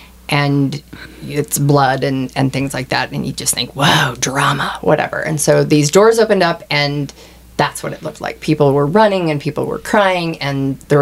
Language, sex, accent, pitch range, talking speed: English, female, American, 140-160 Hz, 195 wpm